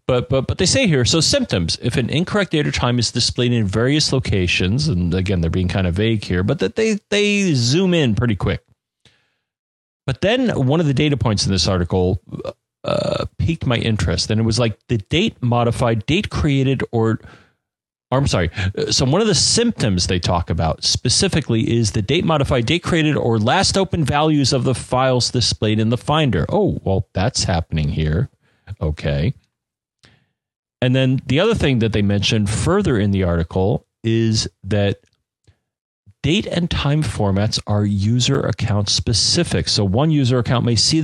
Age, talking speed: 30-49, 175 wpm